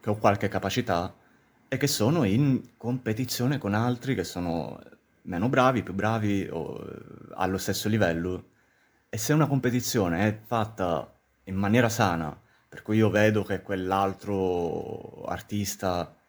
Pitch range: 90-110 Hz